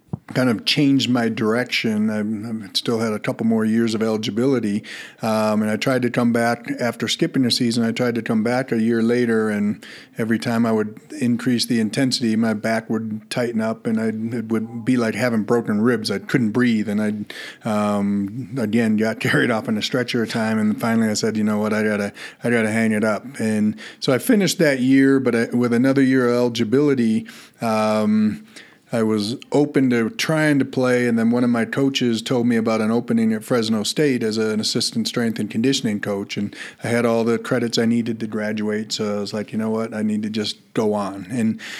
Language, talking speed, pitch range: English, 215 wpm, 110-125 Hz